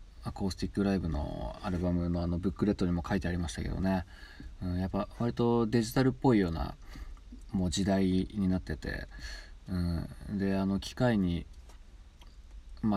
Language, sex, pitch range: Japanese, male, 80-100 Hz